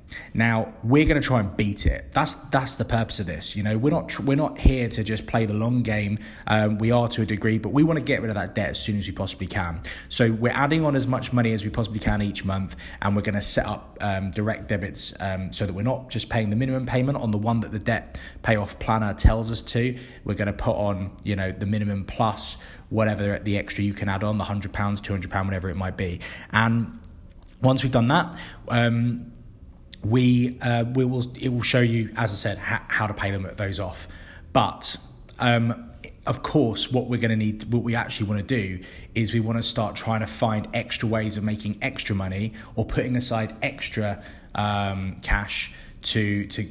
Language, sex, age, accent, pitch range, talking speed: English, male, 20-39, British, 100-120 Hz, 230 wpm